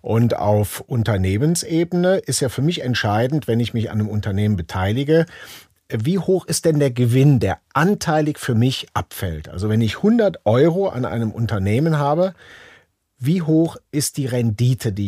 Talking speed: 165 wpm